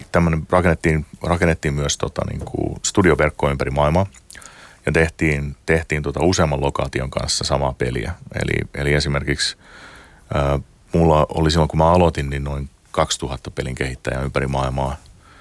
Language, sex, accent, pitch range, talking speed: Finnish, male, native, 70-80 Hz, 140 wpm